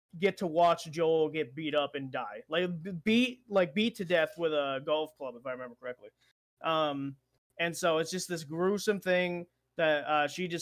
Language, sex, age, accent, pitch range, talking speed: English, male, 20-39, American, 145-185 Hz, 200 wpm